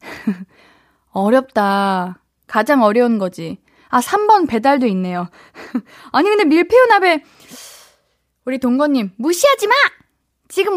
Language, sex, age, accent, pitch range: Korean, female, 20-39, native, 230-360 Hz